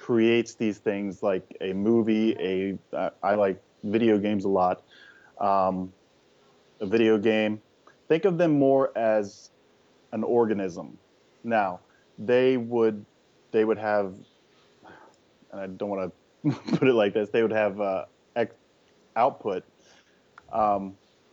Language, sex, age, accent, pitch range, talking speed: English, male, 30-49, American, 95-115 Hz, 130 wpm